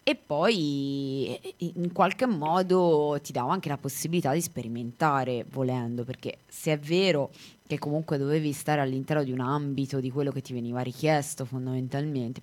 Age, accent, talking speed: 20-39, native, 155 wpm